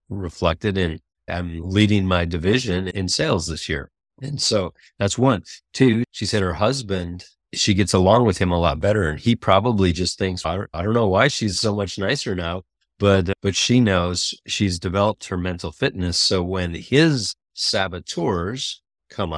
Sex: male